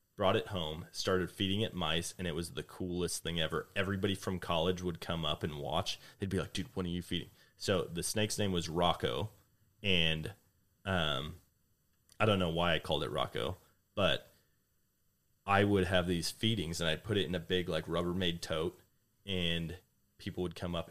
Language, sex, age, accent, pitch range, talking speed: English, male, 30-49, American, 85-100 Hz, 190 wpm